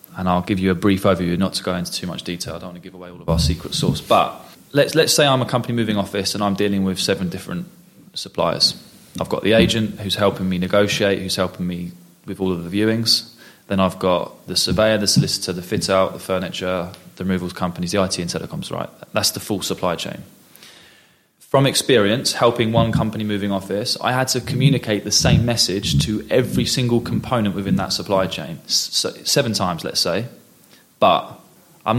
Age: 20-39